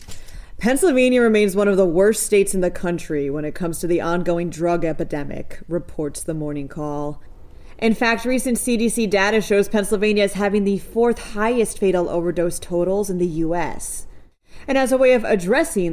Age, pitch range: 30-49, 170-220 Hz